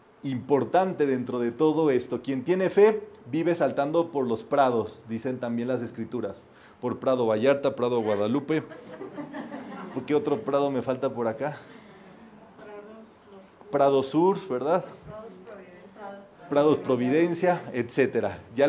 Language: Spanish